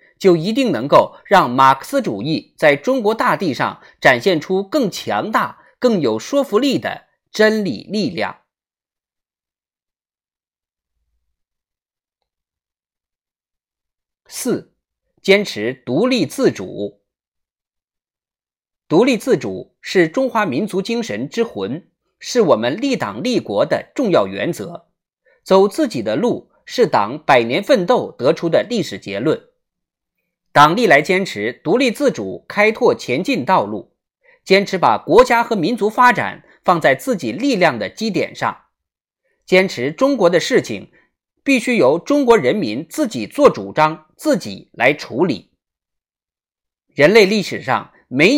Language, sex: Chinese, male